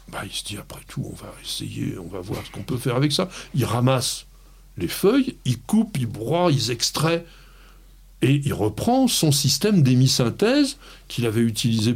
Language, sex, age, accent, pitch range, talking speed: French, male, 60-79, French, 120-175 Hz, 185 wpm